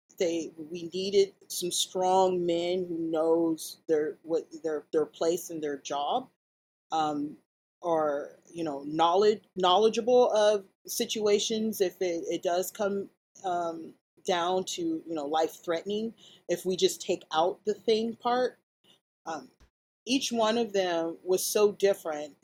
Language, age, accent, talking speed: English, 30-49, American, 140 wpm